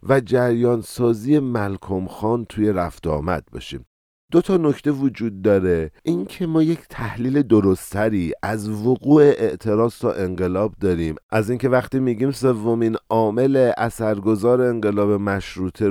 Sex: male